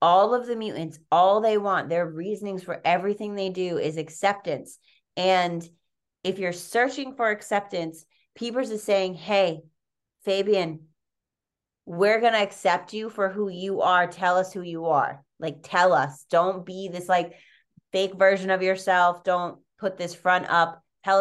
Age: 30-49